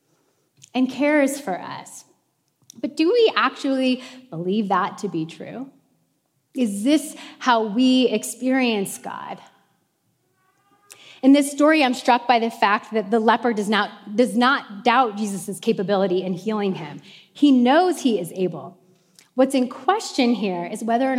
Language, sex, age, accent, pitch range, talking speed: English, female, 30-49, American, 200-275 Hz, 145 wpm